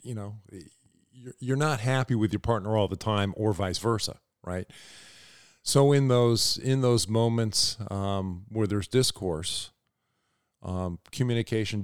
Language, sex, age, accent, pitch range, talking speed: English, male, 40-59, American, 95-110 Hz, 135 wpm